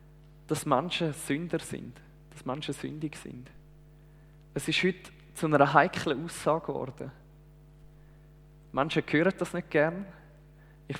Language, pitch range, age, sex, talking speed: German, 150-175 Hz, 20-39, male, 120 wpm